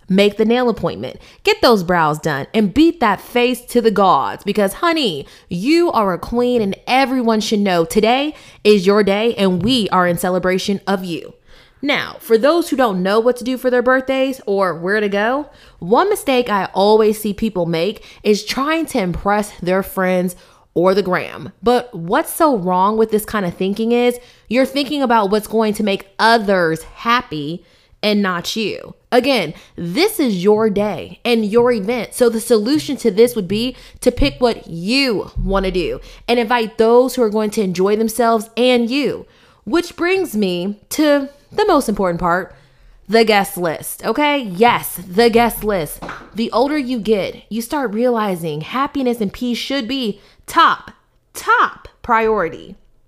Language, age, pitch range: English, 20-39, 195-245 Hz